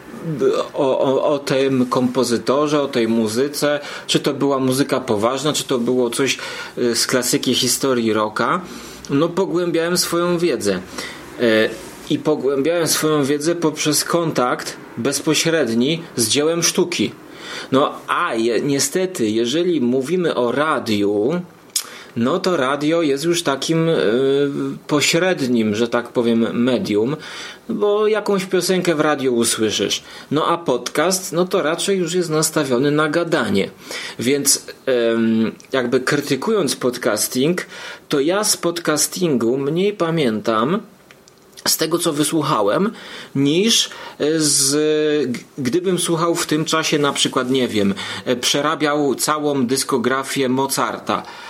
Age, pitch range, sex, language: 30-49, 125-170 Hz, male, Polish